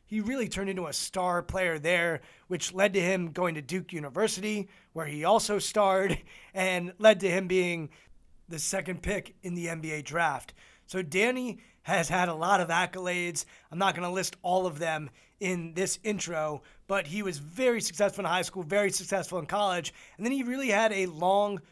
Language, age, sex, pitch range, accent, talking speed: English, 20-39, male, 175-210 Hz, American, 195 wpm